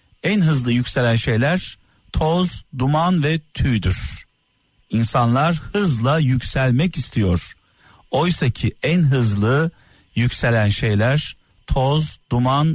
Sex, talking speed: male, 90 wpm